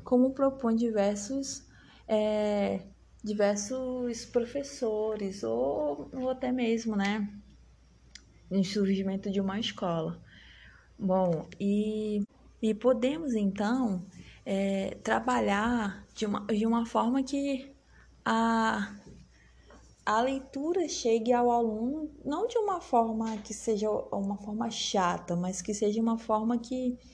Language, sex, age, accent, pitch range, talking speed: Portuguese, female, 20-39, Brazilian, 205-255 Hz, 105 wpm